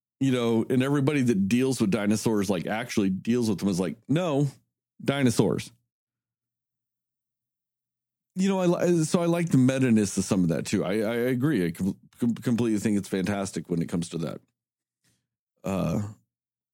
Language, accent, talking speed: English, American, 160 wpm